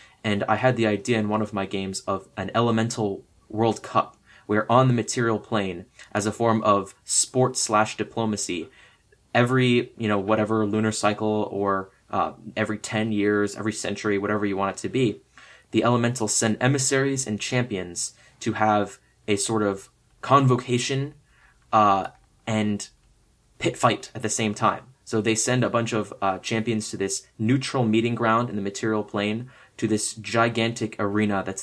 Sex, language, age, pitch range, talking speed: male, English, 20-39, 100-115 Hz, 165 wpm